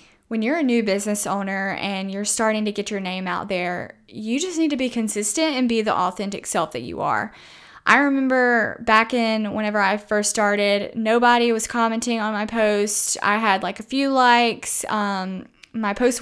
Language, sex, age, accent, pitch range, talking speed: English, female, 10-29, American, 205-235 Hz, 190 wpm